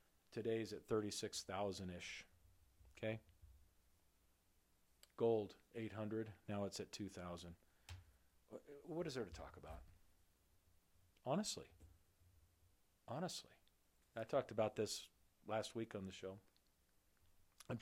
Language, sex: English, male